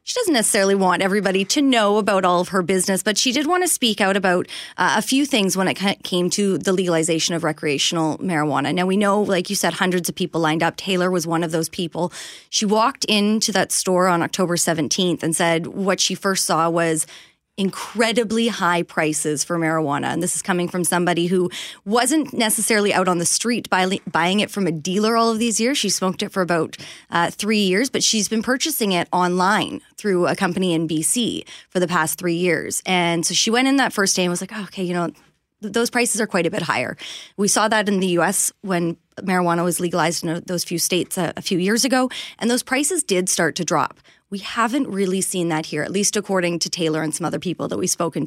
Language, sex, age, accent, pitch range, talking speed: English, female, 20-39, American, 170-215 Hz, 225 wpm